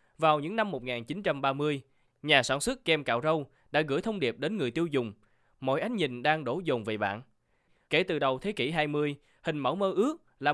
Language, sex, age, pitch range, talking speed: Vietnamese, male, 20-39, 125-170 Hz, 210 wpm